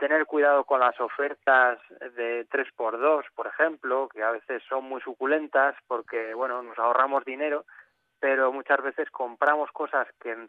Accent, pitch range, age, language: Spanish, 120-145 Hz, 20-39, Spanish